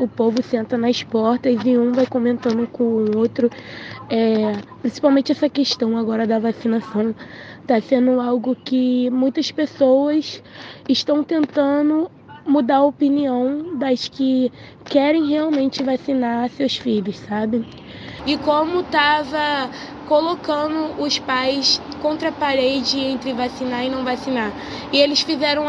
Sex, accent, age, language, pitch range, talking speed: female, Brazilian, 20-39, Portuguese, 250-295 Hz, 125 wpm